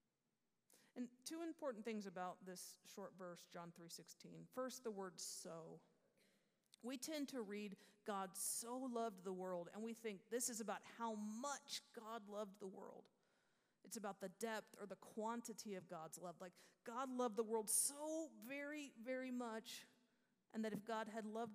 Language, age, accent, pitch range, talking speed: English, 40-59, American, 185-230 Hz, 165 wpm